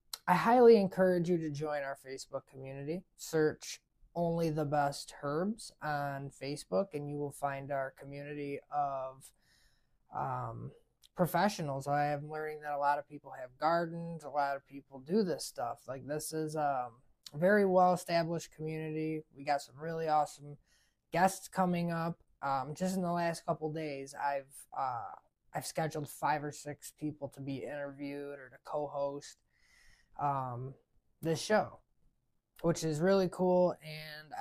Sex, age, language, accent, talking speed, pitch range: male, 20-39, English, American, 150 wpm, 140-180 Hz